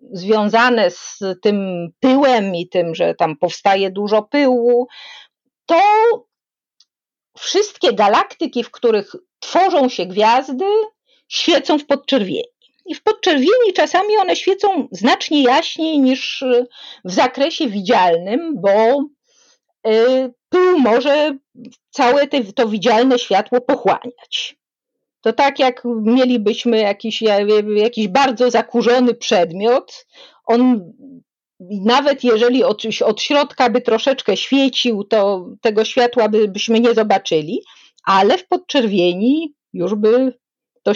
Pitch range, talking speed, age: 215-285 Hz, 105 wpm, 40-59